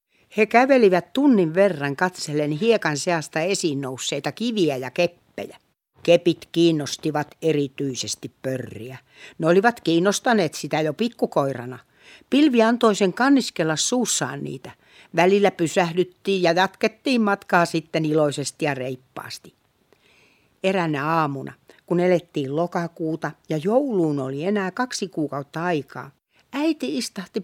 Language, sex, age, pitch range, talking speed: Finnish, female, 60-79, 150-215 Hz, 110 wpm